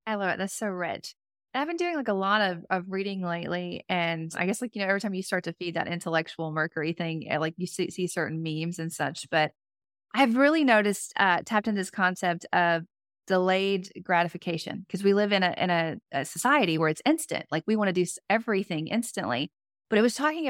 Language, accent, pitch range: English, American, 165-205 Hz